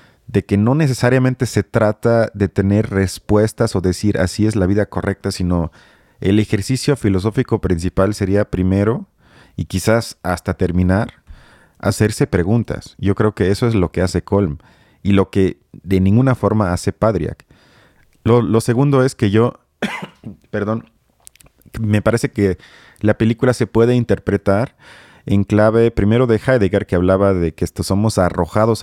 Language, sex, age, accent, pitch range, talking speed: Spanish, male, 30-49, Mexican, 95-115 Hz, 150 wpm